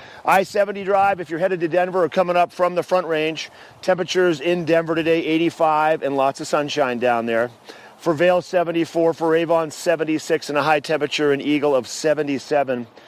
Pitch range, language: 140-175 Hz, English